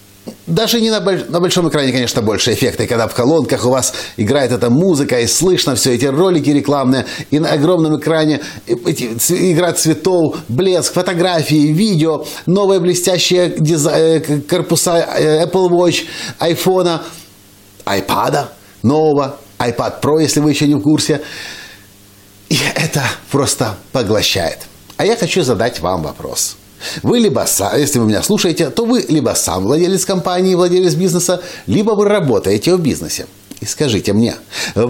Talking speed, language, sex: 150 wpm, Russian, male